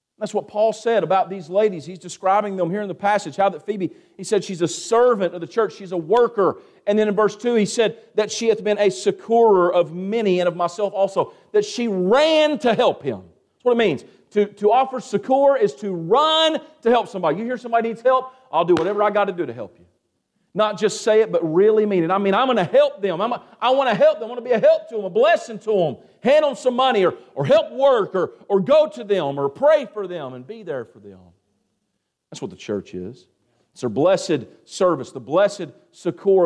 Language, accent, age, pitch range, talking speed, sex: English, American, 40-59, 165-225 Hz, 245 wpm, male